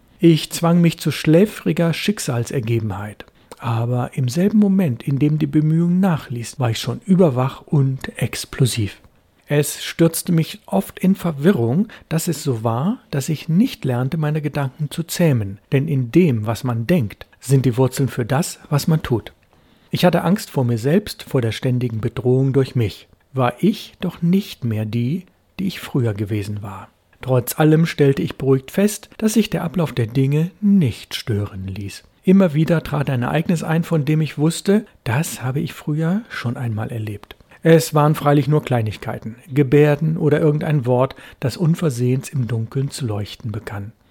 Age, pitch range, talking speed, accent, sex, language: 60-79, 125-165 Hz, 170 wpm, German, male, German